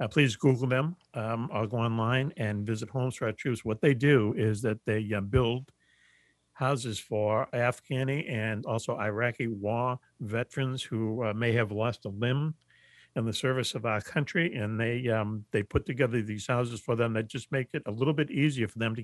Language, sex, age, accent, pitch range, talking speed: English, male, 60-79, American, 110-130 Hz, 200 wpm